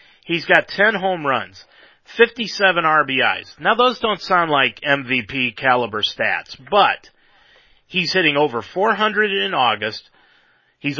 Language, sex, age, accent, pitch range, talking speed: English, male, 30-49, American, 125-175 Hz, 125 wpm